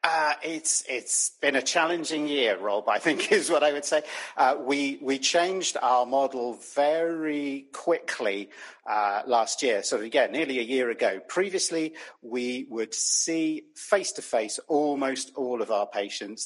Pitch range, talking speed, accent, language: 120-150 Hz, 155 wpm, British, English